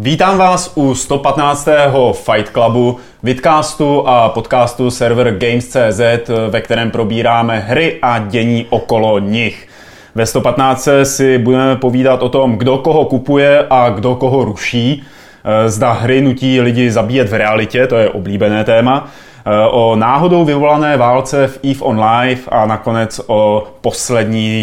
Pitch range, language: 115-135 Hz, Czech